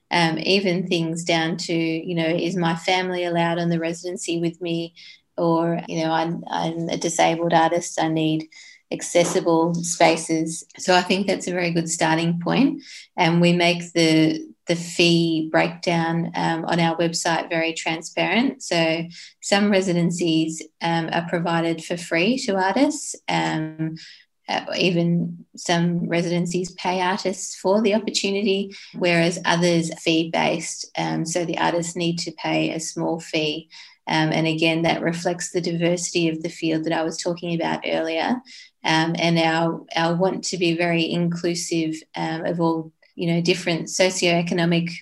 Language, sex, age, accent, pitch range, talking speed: English, female, 20-39, Australian, 165-180 Hz, 155 wpm